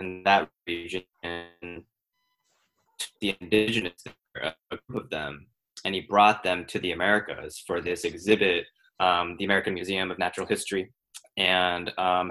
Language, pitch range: English, 95-120 Hz